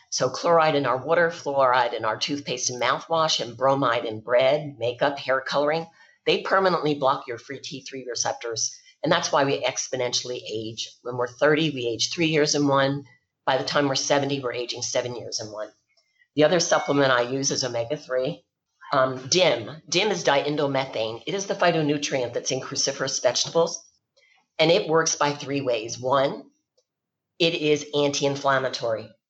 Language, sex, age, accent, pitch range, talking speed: English, female, 40-59, American, 130-155 Hz, 165 wpm